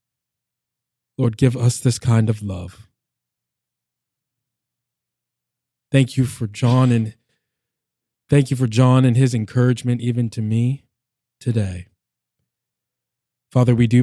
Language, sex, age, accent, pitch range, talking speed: English, male, 20-39, American, 90-125 Hz, 110 wpm